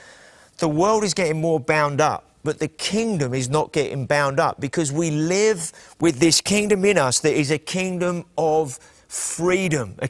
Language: English